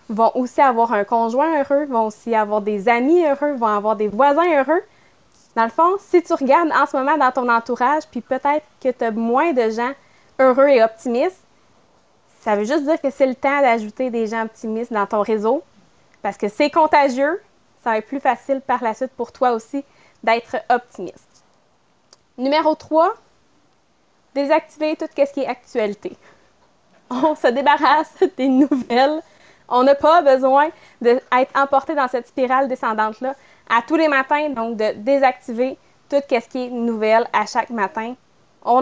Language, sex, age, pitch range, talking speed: English, female, 20-39, 225-280 Hz, 170 wpm